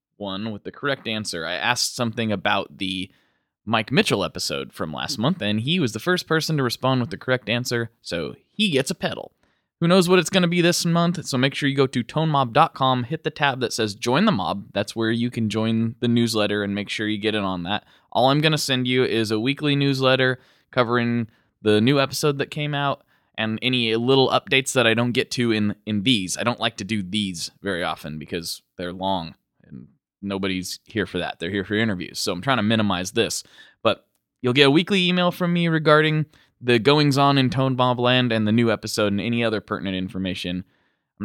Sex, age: male, 20-39